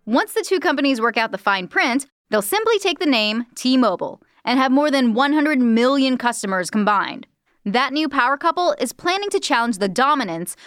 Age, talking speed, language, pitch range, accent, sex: 10-29, 185 wpm, English, 215-305 Hz, American, female